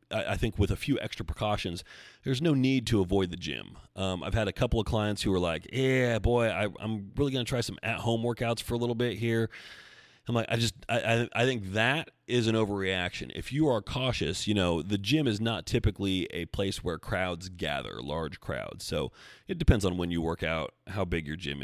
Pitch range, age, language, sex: 90-115 Hz, 30-49, English, male